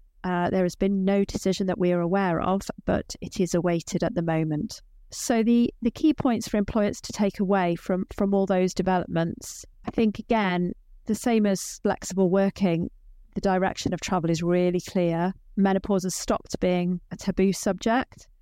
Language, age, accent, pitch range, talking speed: English, 40-59, British, 175-205 Hz, 180 wpm